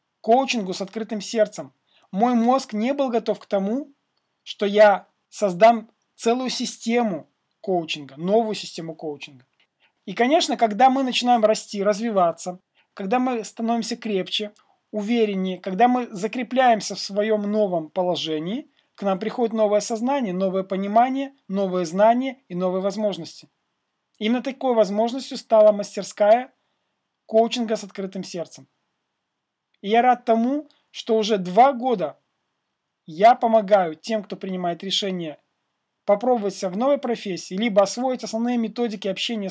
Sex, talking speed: male, 125 wpm